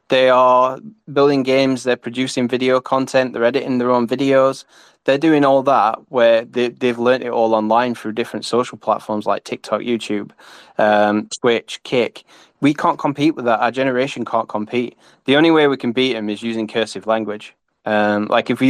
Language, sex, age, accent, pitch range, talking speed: English, male, 10-29, British, 110-125 Hz, 185 wpm